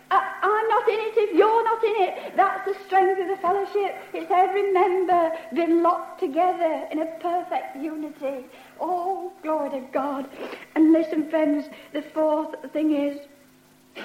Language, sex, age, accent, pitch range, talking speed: English, female, 60-79, British, 285-370 Hz, 160 wpm